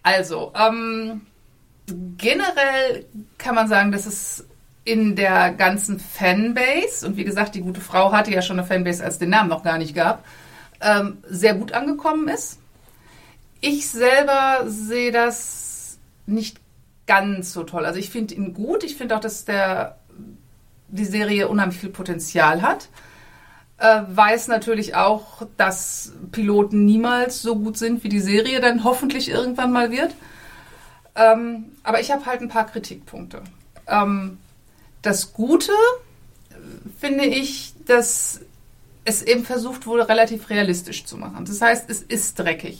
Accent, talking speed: German, 145 wpm